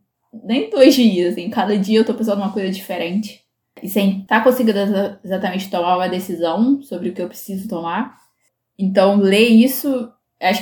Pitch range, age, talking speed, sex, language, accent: 185-225 Hz, 10-29, 180 wpm, female, Portuguese, Brazilian